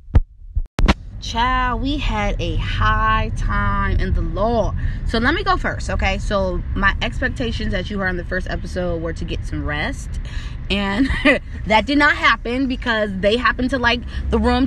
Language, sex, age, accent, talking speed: English, female, 20-39, American, 170 wpm